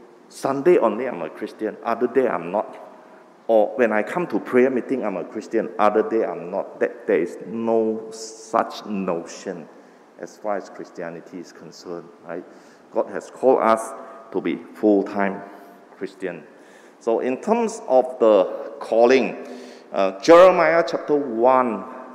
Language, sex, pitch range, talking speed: English, male, 105-140 Hz, 145 wpm